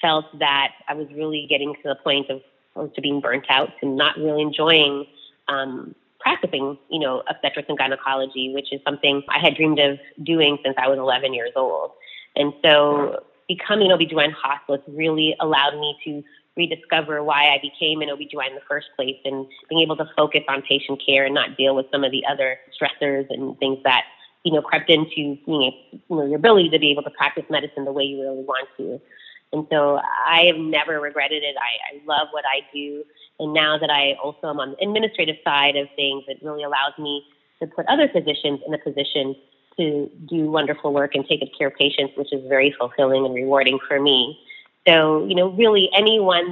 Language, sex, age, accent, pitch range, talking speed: English, female, 20-39, American, 140-160 Hz, 205 wpm